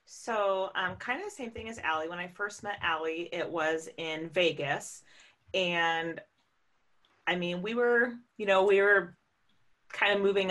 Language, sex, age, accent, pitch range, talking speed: English, female, 30-49, American, 155-195 Hz, 170 wpm